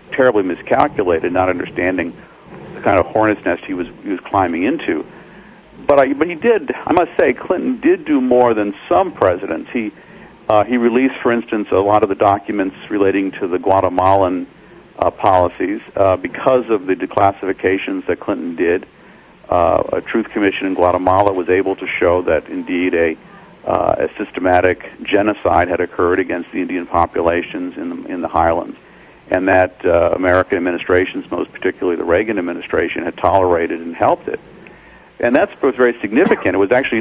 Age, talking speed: 50-69, 170 wpm